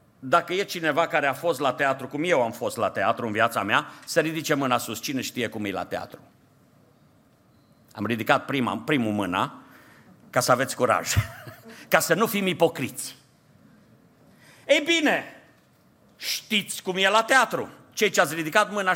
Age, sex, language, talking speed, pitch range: 50-69, male, Romanian, 165 wpm, 180-270 Hz